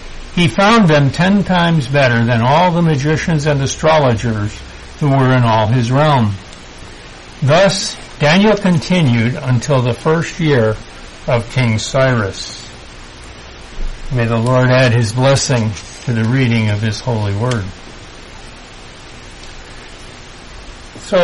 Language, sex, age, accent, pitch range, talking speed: English, male, 60-79, American, 105-155 Hz, 120 wpm